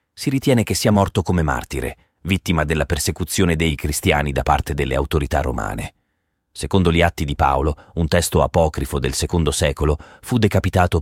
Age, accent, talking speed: 40-59, native, 165 wpm